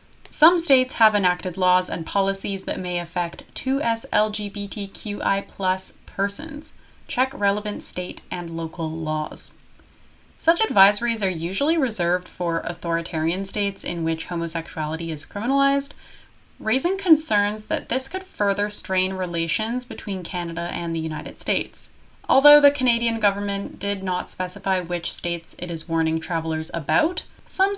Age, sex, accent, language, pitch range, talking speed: 20-39, female, American, English, 170-240 Hz, 130 wpm